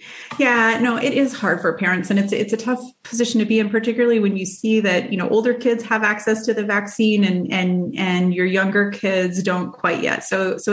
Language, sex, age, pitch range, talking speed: English, female, 30-49, 190-240 Hz, 230 wpm